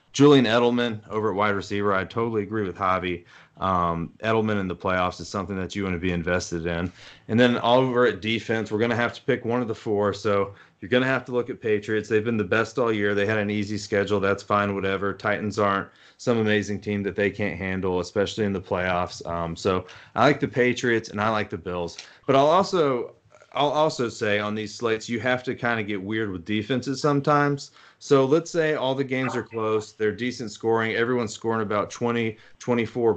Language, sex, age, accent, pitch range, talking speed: English, male, 30-49, American, 100-120 Hz, 225 wpm